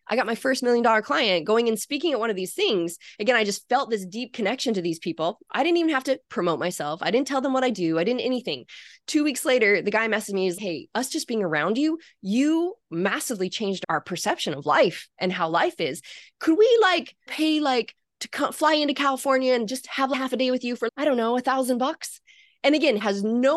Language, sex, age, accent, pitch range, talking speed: English, female, 20-39, American, 185-260 Hz, 240 wpm